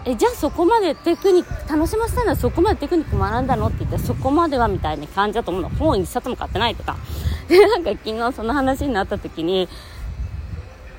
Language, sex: Japanese, female